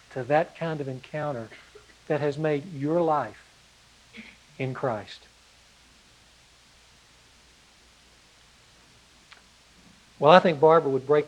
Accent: American